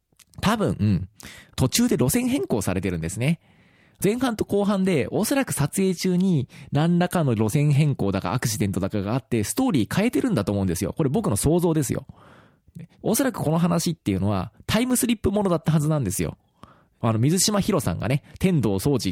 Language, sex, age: Japanese, male, 20-39